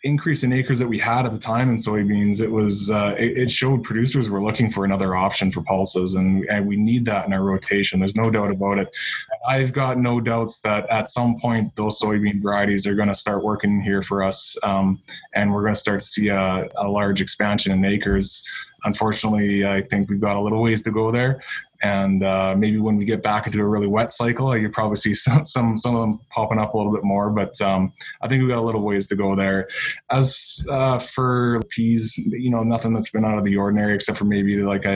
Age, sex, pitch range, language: 20-39, male, 100-115 Hz, English